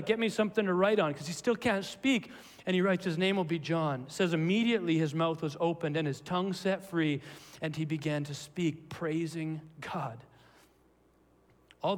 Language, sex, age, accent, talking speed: Polish, male, 40-59, American, 190 wpm